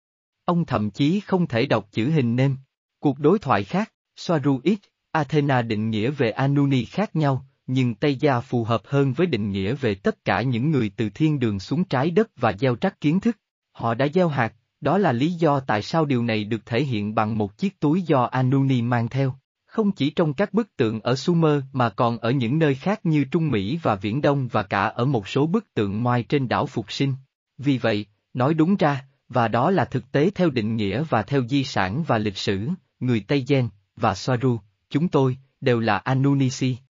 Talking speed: 215 wpm